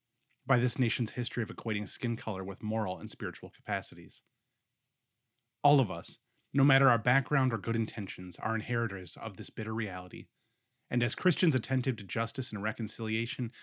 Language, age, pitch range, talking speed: English, 30-49, 105-130 Hz, 165 wpm